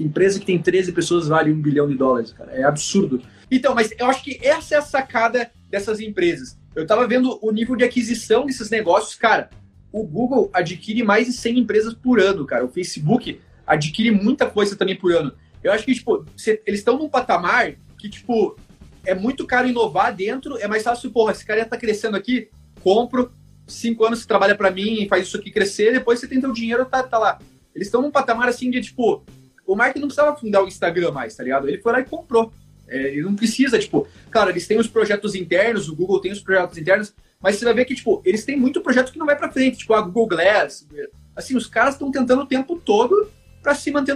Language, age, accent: Portuguese, 30-49, Brazilian